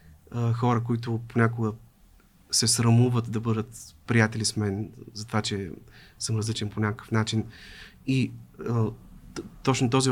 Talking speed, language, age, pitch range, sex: 135 wpm, Bulgarian, 30-49, 110-130 Hz, male